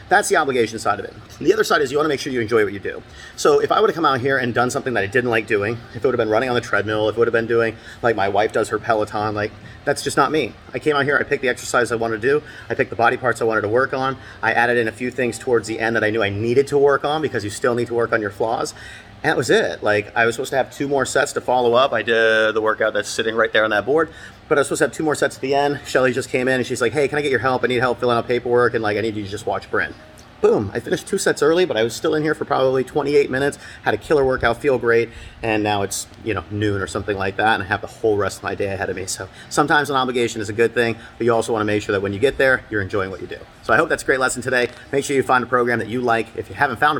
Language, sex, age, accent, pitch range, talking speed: English, male, 30-49, American, 110-130 Hz, 335 wpm